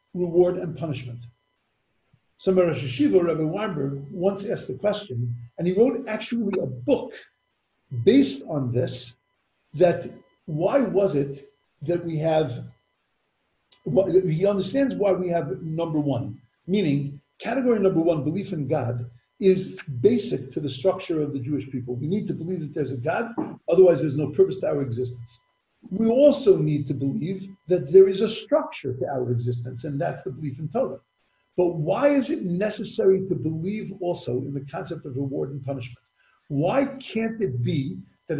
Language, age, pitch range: English, 50-69, 140-195 Hz